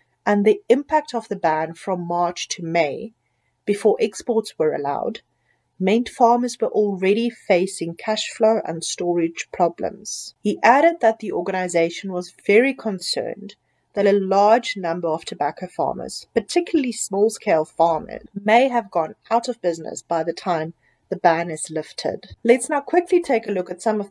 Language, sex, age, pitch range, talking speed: English, female, 40-59, 175-235 Hz, 160 wpm